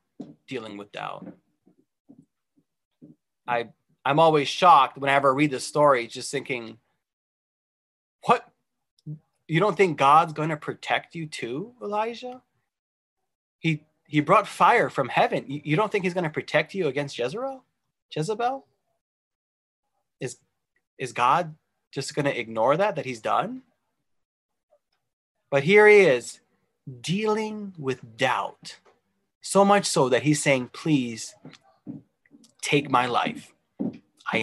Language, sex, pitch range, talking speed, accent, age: English, male, 130-185 Hz, 125 wpm, American, 30-49